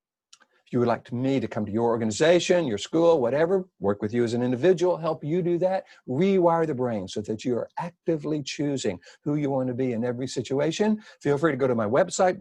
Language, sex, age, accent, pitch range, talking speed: English, male, 60-79, American, 110-170 Hz, 225 wpm